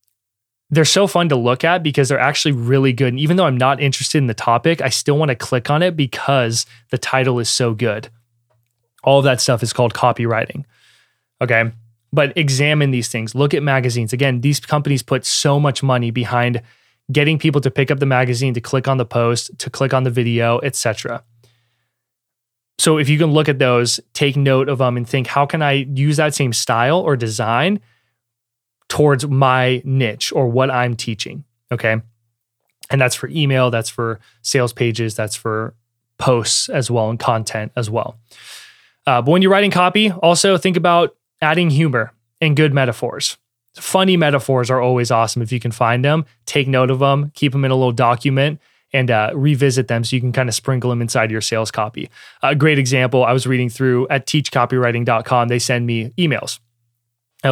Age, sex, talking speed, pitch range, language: 20-39, male, 195 wpm, 120-140 Hz, English